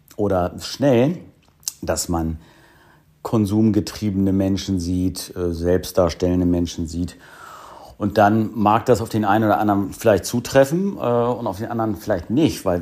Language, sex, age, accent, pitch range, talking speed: German, male, 50-69, German, 90-110 Hz, 130 wpm